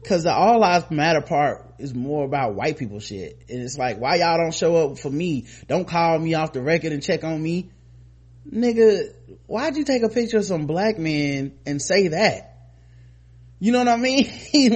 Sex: male